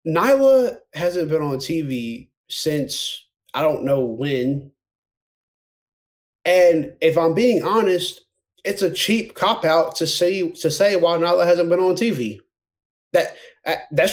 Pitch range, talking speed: 145-195 Hz, 125 wpm